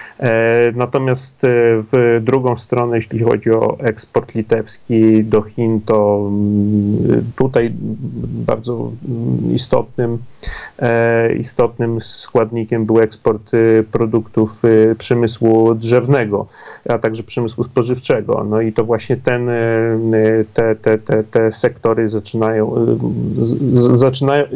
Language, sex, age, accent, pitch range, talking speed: Polish, male, 40-59, native, 110-130 Hz, 95 wpm